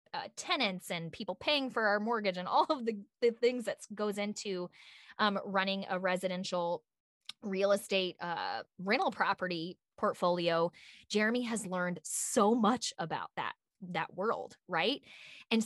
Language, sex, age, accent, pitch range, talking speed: English, female, 20-39, American, 170-215 Hz, 145 wpm